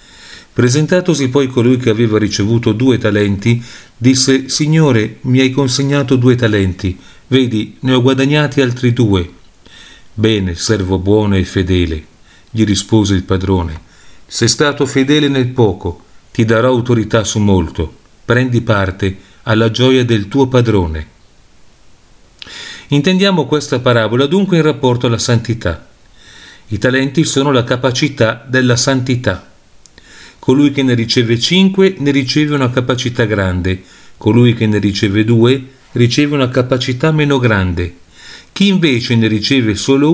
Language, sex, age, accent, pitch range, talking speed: Italian, male, 40-59, native, 105-135 Hz, 130 wpm